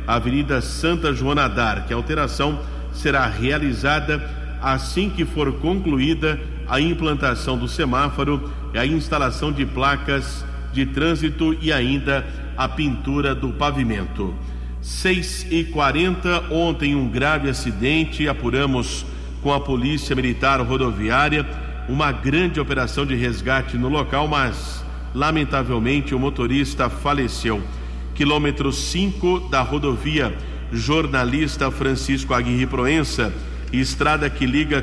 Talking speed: 105 wpm